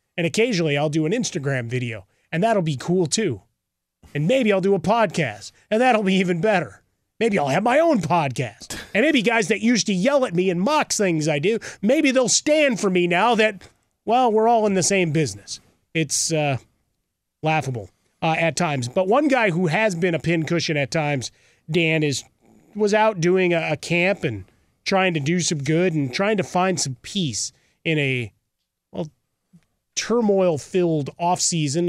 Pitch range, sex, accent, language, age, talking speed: 145-190 Hz, male, American, English, 30-49, 185 wpm